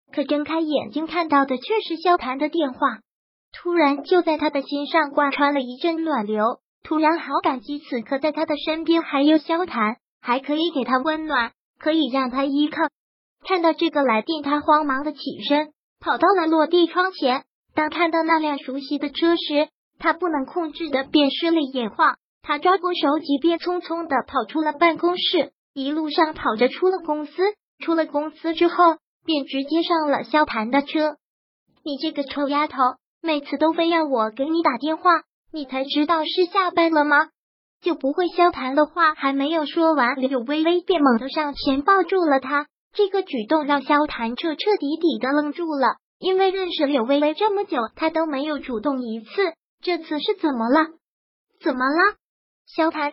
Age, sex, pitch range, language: 20-39, male, 275-330 Hz, Chinese